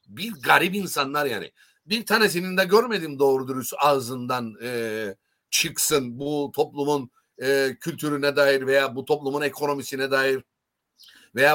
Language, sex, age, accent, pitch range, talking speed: Turkish, male, 60-79, native, 140-210 Hz, 110 wpm